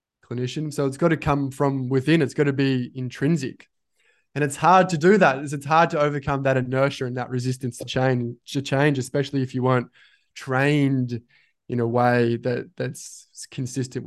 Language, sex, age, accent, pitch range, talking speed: English, male, 20-39, Australian, 125-145 Hz, 180 wpm